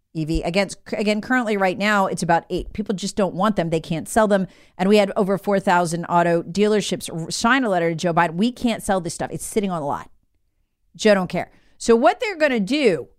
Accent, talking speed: American, 225 wpm